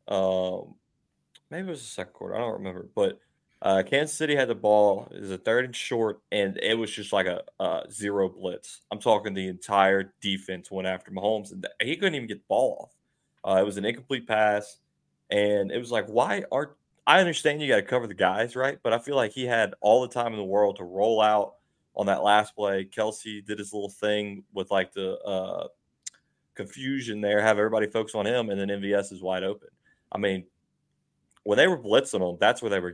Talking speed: 220 wpm